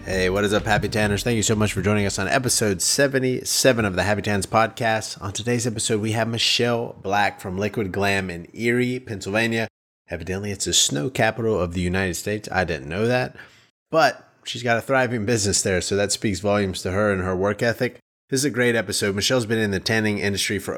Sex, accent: male, American